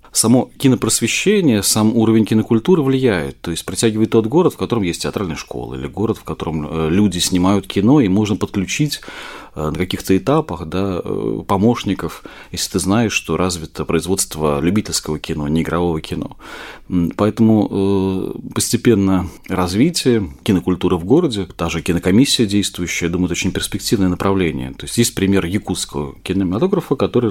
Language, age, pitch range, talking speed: Russian, 40-59, 85-110 Hz, 145 wpm